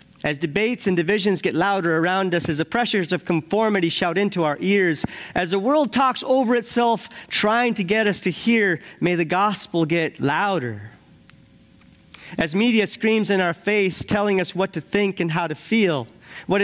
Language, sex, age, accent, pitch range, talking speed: English, male, 40-59, American, 165-215 Hz, 180 wpm